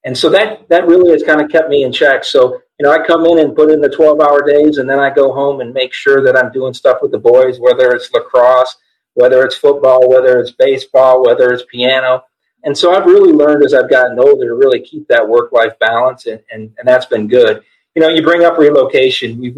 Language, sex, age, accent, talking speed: English, male, 50-69, American, 245 wpm